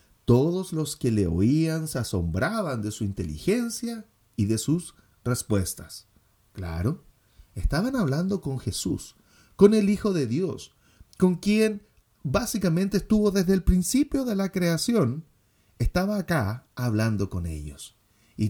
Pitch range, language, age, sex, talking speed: 100-170 Hz, English, 40-59, male, 130 wpm